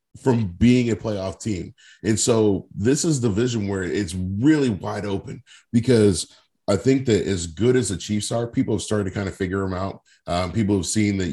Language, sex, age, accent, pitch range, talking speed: English, male, 30-49, American, 95-110 Hz, 210 wpm